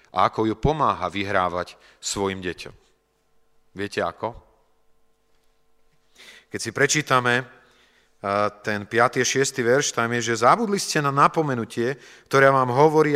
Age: 40-59